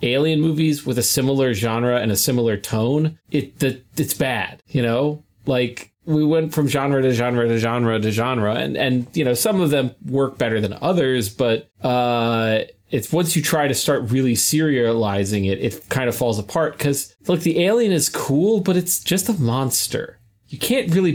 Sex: male